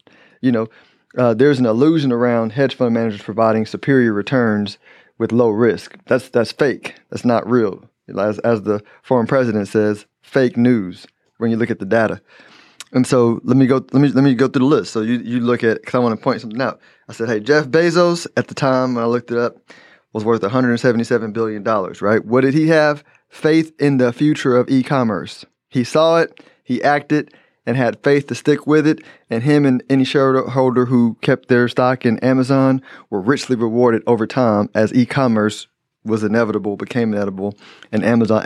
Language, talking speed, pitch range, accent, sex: English, 195 wpm, 110-135 Hz, American, male